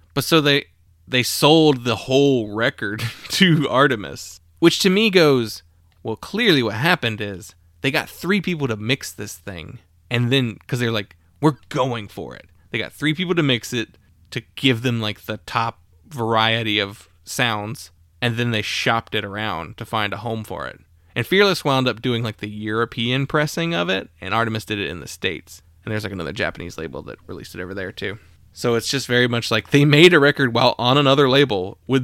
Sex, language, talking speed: male, English, 205 wpm